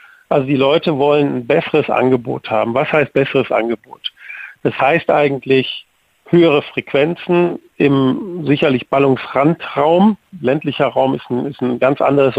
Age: 40-59